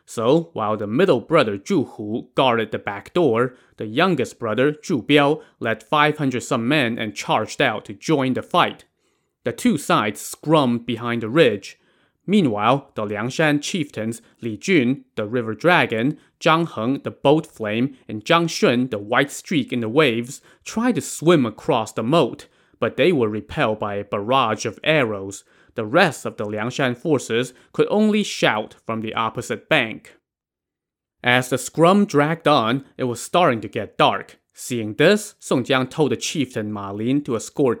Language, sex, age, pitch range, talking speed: English, male, 20-39, 110-145 Hz, 170 wpm